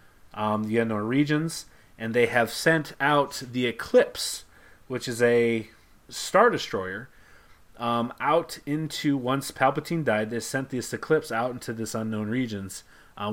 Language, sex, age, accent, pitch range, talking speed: English, male, 30-49, American, 105-130 Hz, 145 wpm